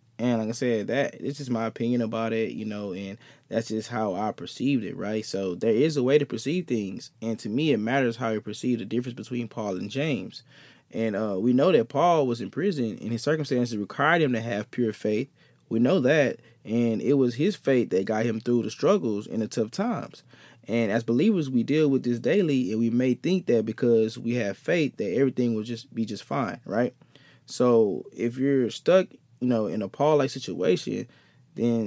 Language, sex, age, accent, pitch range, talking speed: English, male, 20-39, American, 110-135 Hz, 215 wpm